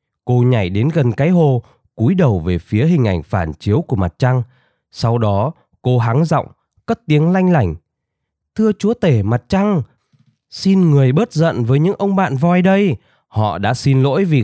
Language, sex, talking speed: Vietnamese, male, 190 wpm